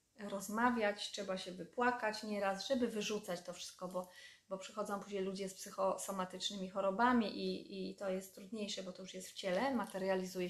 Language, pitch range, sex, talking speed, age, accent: Polish, 185-225 Hz, female, 165 wpm, 20-39, native